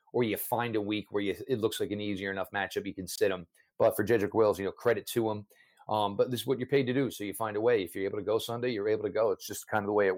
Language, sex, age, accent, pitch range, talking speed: English, male, 40-59, American, 105-140 Hz, 340 wpm